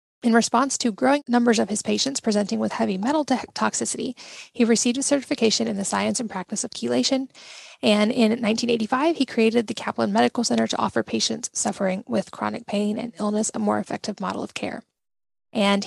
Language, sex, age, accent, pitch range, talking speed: English, female, 10-29, American, 205-240 Hz, 185 wpm